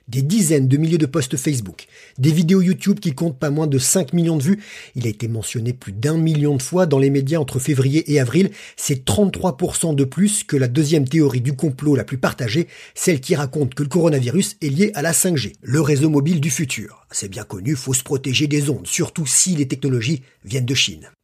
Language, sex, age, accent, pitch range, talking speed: French, male, 50-69, French, 130-160 Hz, 225 wpm